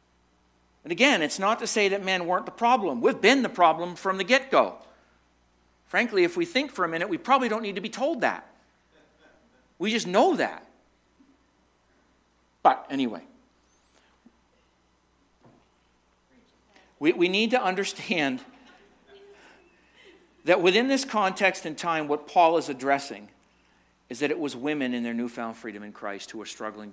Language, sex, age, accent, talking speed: English, male, 50-69, American, 150 wpm